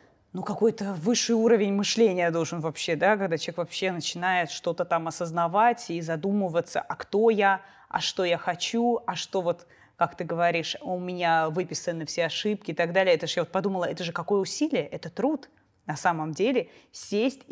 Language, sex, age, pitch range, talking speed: Russian, female, 20-39, 170-205 Hz, 180 wpm